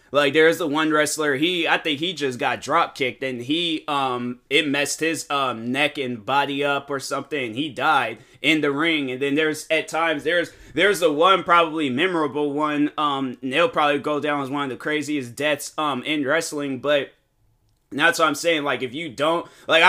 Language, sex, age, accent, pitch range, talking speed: English, male, 20-39, American, 140-165 Hz, 205 wpm